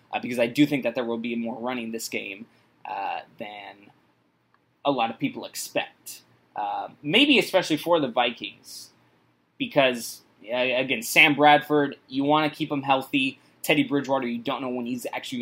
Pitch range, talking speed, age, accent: 120-150 Hz, 175 wpm, 20-39, American